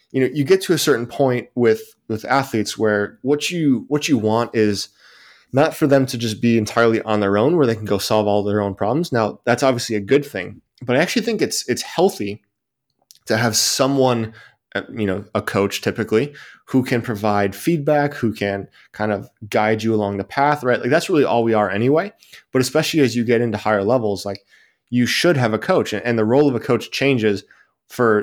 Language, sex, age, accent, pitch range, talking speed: English, male, 20-39, American, 105-135 Hz, 215 wpm